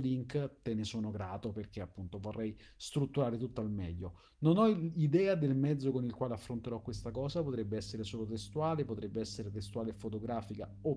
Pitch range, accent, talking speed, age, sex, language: 105-130 Hz, native, 180 wpm, 40-59, male, Italian